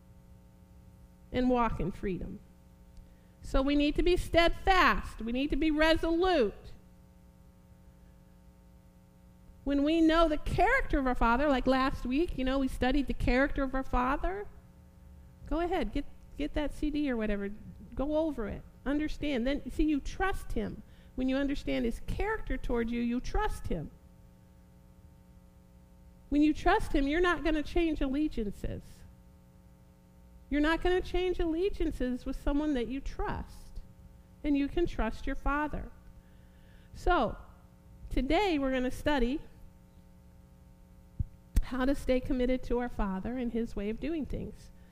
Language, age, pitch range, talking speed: English, 50-69, 225-305 Hz, 145 wpm